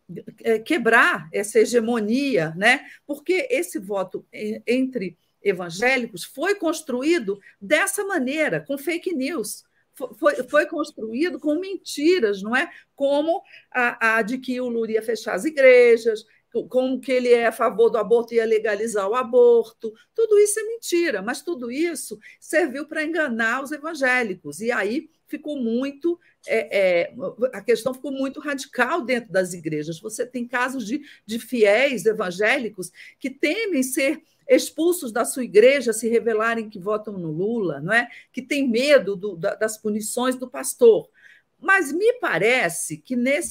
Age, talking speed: 50-69, 140 wpm